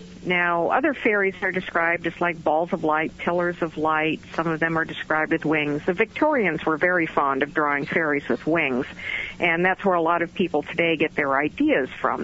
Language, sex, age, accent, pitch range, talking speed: English, female, 50-69, American, 160-195 Hz, 205 wpm